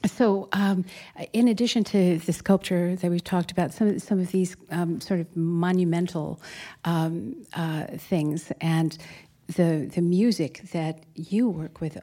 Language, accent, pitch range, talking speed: English, American, 155-190 Hz, 155 wpm